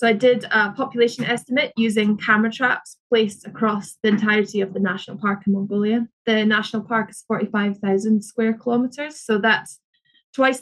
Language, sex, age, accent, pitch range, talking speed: English, female, 20-39, British, 205-250 Hz, 165 wpm